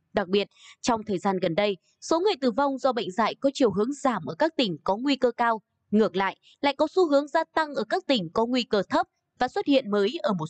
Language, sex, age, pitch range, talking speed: Vietnamese, female, 20-39, 195-280 Hz, 265 wpm